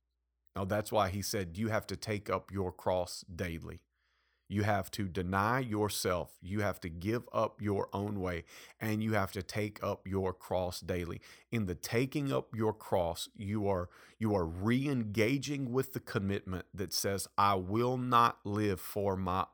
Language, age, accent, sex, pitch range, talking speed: English, 30-49, American, male, 90-115 Hz, 170 wpm